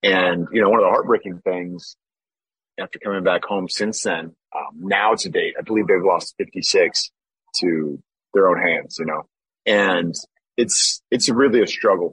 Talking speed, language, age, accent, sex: 180 wpm, English, 30-49, American, male